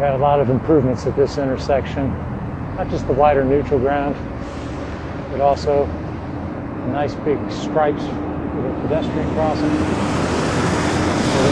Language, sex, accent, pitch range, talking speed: English, male, American, 120-150 Hz, 125 wpm